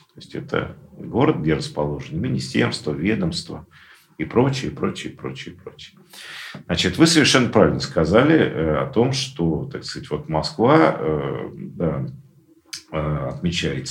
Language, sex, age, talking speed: Russian, male, 50-69, 115 wpm